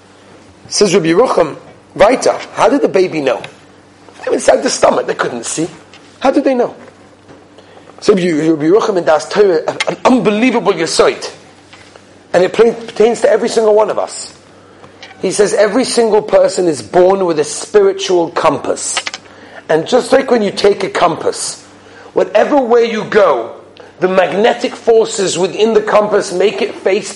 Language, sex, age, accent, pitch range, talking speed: English, male, 40-59, British, 185-270 Hz, 155 wpm